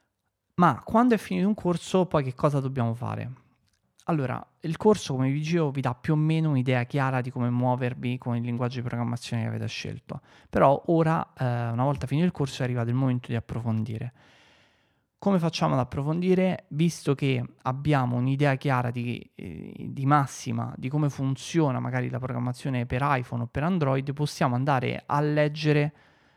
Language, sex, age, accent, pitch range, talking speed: Italian, male, 20-39, native, 125-150 Hz, 175 wpm